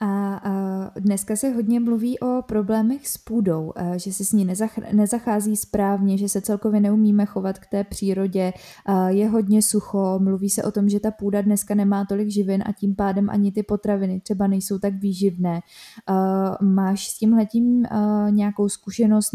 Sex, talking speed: female, 160 wpm